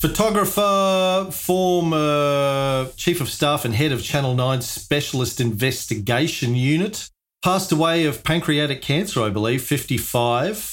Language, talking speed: English, 115 wpm